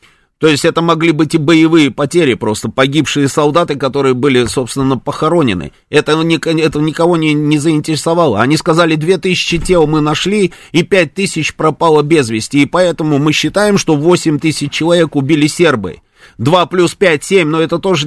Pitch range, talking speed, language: 145-180 Hz, 160 wpm, Russian